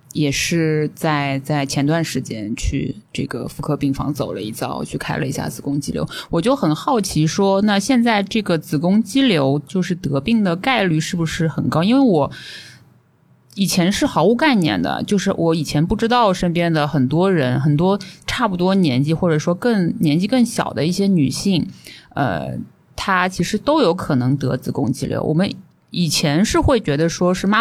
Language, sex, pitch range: Chinese, female, 145-190 Hz